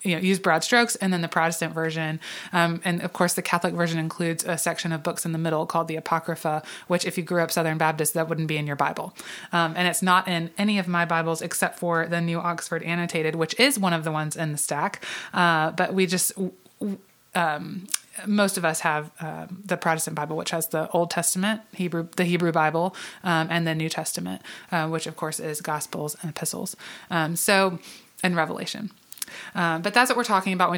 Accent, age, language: American, 20-39, English